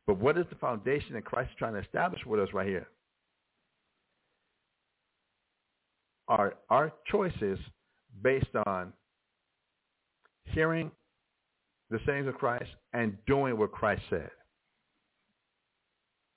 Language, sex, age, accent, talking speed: English, male, 60-79, American, 110 wpm